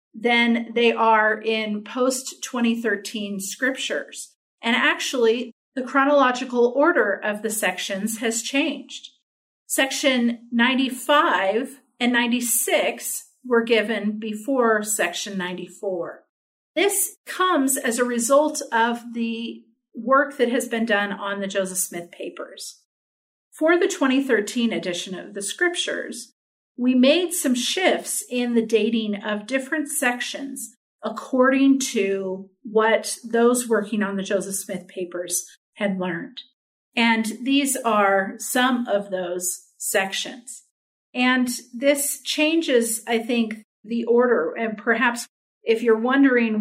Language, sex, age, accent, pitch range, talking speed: English, female, 40-59, American, 210-255 Hz, 115 wpm